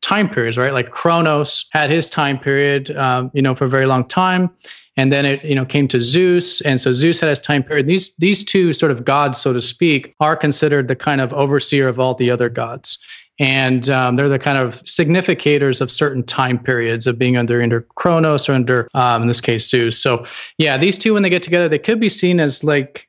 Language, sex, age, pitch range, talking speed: English, male, 30-49, 130-150 Hz, 230 wpm